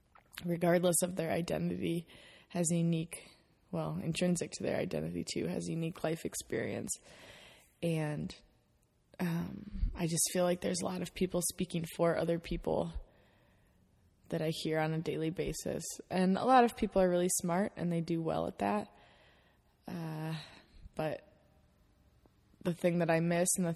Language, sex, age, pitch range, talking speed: English, female, 20-39, 150-175 Hz, 155 wpm